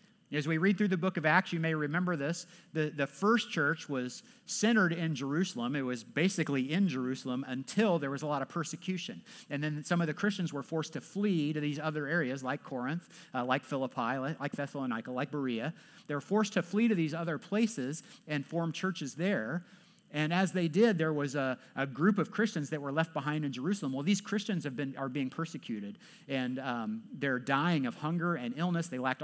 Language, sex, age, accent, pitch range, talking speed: English, male, 50-69, American, 145-200 Hz, 215 wpm